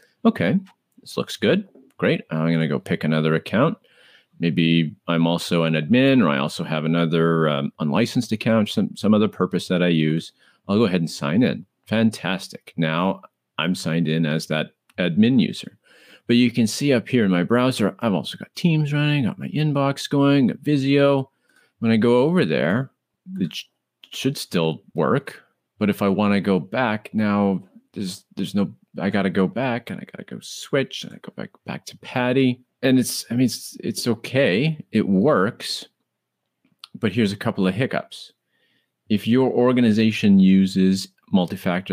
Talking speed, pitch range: 175 wpm, 85-125 Hz